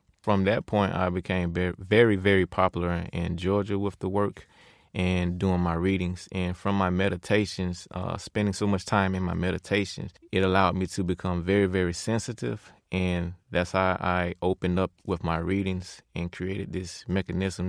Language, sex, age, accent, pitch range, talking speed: English, male, 20-39, American, 90-105 Hz, 170 wpm